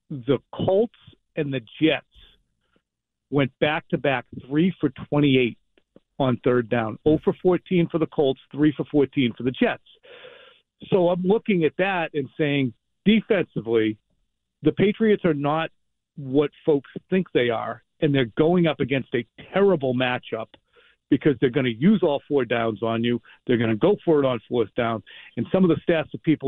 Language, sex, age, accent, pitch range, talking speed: English, male, 40-59, American, 130-165 Hz, 160 wpm